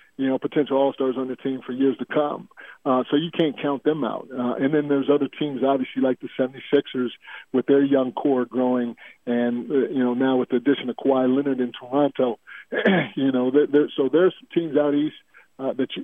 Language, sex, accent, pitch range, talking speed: English, male, American, 130-150 Hz, 200 wpm